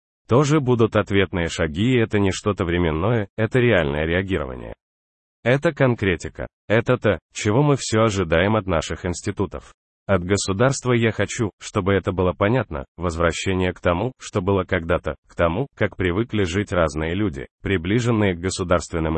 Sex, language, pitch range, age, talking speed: male, Ukrainian, 85-110 Hz, 30-49, 145 wpm